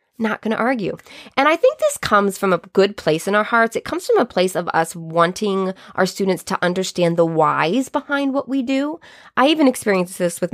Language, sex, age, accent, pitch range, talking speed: English, female, 20-39, American, 170-220 Hz, 220 wpm